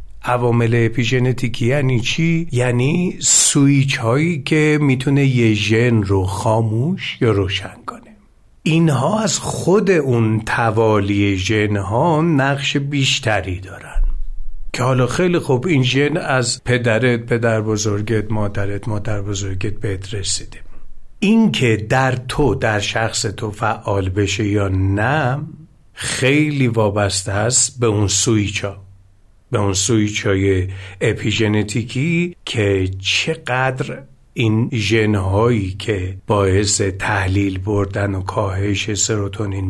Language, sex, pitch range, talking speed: Persian, male, 100-125 Hz, 110 wpm